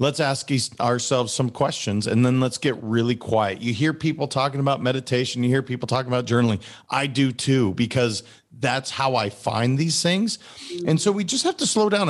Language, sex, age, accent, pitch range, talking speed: English, male, 40-59, American, 120-155 Hz, 205 wpm